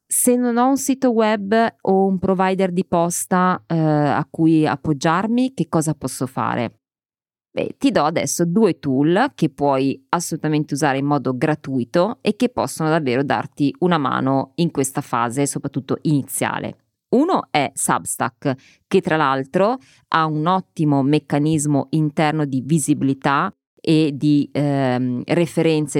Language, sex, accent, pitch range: Italian, female, native, 135-165 Hz